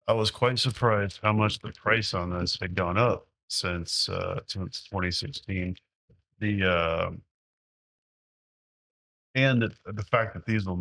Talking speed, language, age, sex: 140 wpm, English, 30-49, male